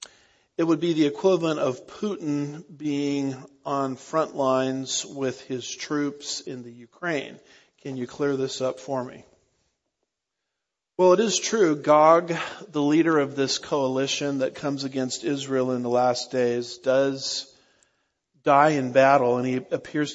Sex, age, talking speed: male, 50-69, 145 wpm